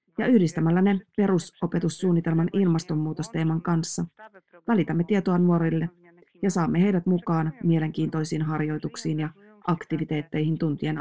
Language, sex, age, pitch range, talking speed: Finnish, female, 30-49, 160-185 Hz, 100 wpm